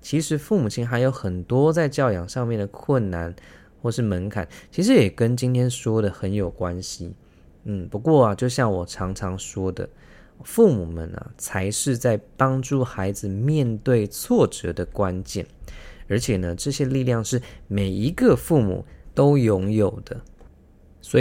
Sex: male